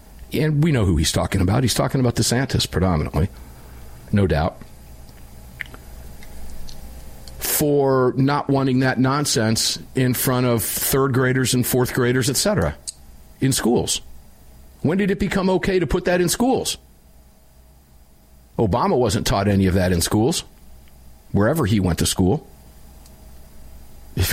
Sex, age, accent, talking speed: male, 50-69, American, 135 wpm